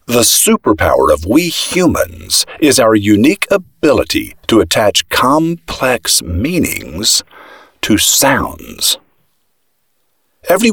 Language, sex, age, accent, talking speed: English, male, 50-69, American, 90 wpm